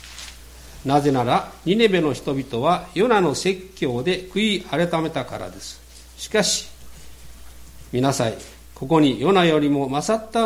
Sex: male